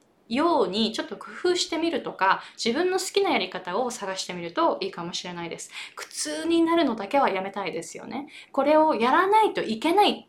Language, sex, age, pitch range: Japanese, female, 20-39, 195-285 Hz